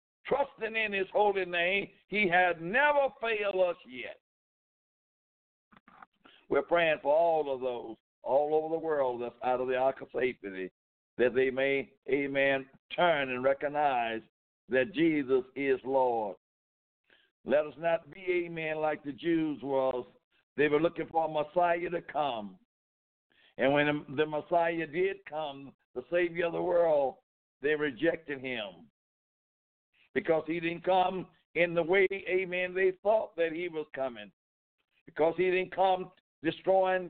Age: 60-79